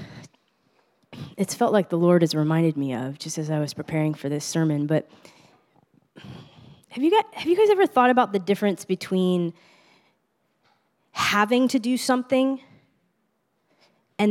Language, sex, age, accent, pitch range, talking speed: English, female, 20-39, American, 160-245 Hz, 145 wpm